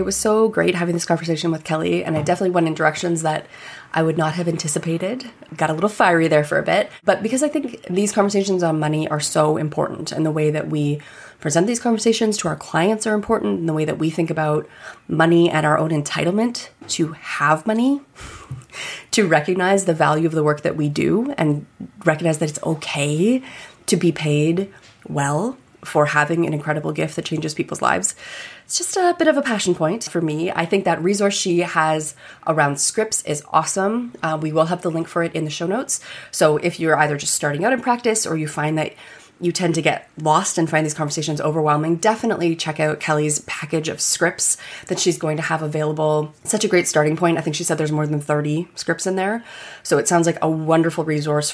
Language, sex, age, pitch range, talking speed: English, female, 20-39, 155-190 Hz, 215 wpm